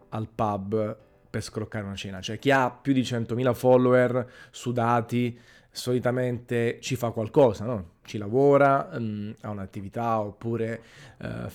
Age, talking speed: 30-49, 140 wpm